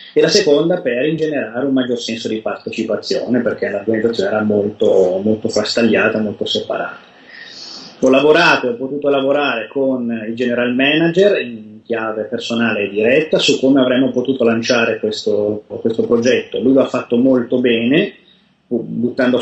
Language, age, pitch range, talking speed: Italian, 30-49, 115-140 Hz, 145 wpm